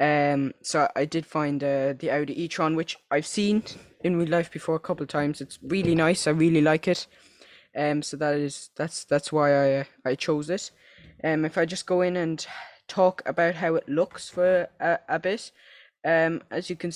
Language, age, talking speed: English, 10-29, 210 wpm